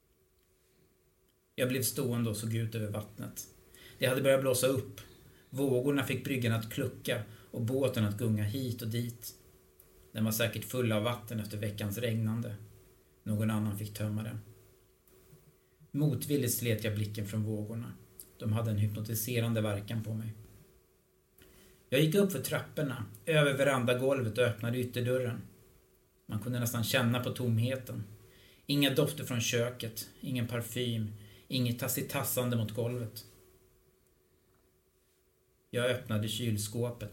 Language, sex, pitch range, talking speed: Swedish, male, 105-125 Hz, 130 wpm